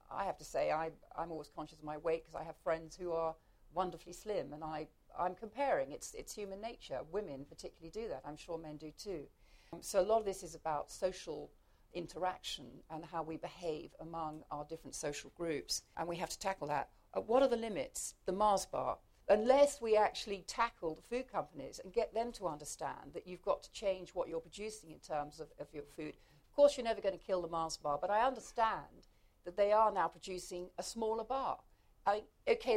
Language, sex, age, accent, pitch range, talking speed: English, female, 50-69, British, 160-220 Hz, 210 wpm